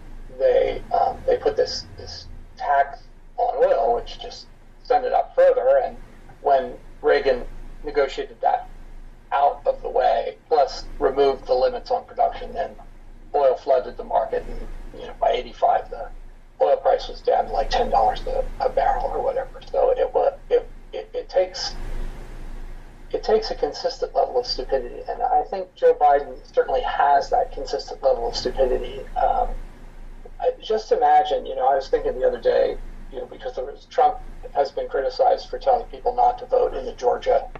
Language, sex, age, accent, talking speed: English, male, 40-59, American, 170 wpm